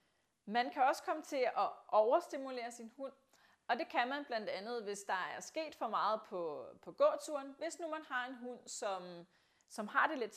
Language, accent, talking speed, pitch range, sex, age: Danish, native, 205 wpm, 200-275 Hz, female, 30-49